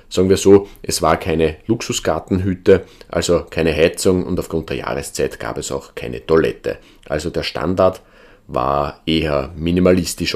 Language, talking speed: German, 145 wpm